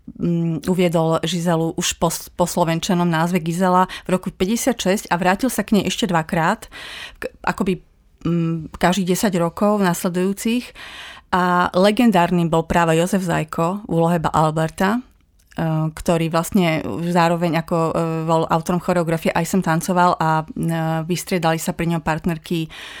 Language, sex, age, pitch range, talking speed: Slovak, female, 30-49, 160-185 Hz, 125 wpm